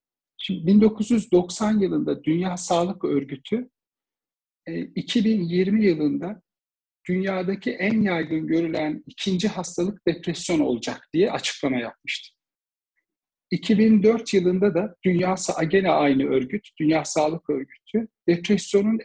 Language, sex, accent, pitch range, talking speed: Turkish, male, native, 150-205 Hz, 90 wpm